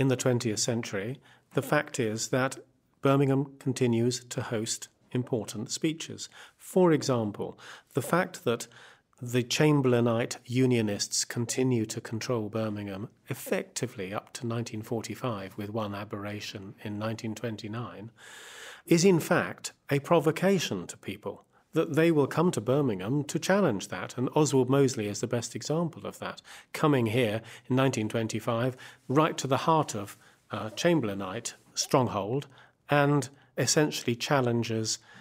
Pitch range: 110-145 Hz